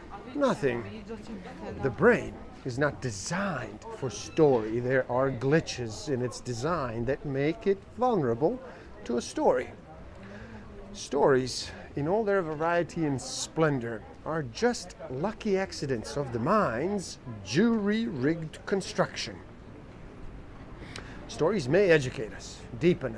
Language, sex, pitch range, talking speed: English, male, 120-170 Hz, 110 wpm